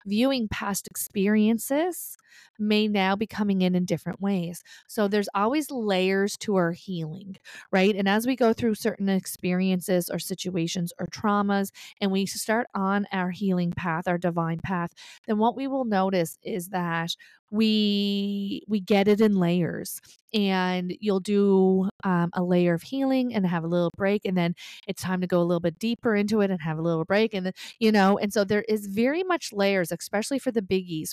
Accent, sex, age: American, female, 30-49